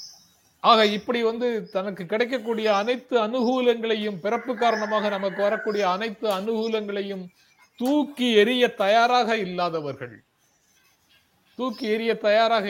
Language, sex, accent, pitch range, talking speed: Tamil, male, native, 170-225 Hz, 95 wpm